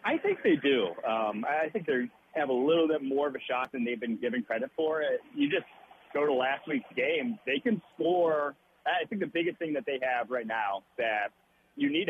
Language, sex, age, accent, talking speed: English, male, 40-59, American, 225 wpm